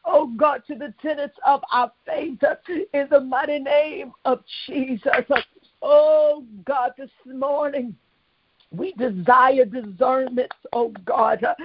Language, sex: English, female